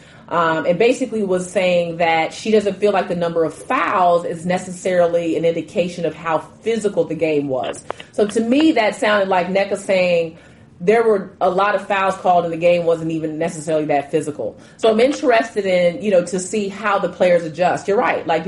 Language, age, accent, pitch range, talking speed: English, 30-49, American, 170-210 Hz, 200 wpm